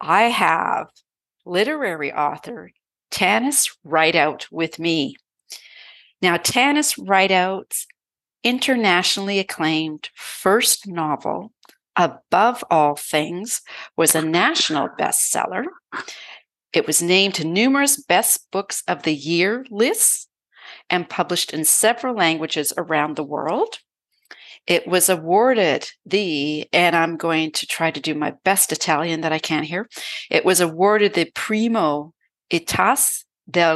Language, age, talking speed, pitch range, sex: English, 50-69, 115 wpm, 160-205 Hz, female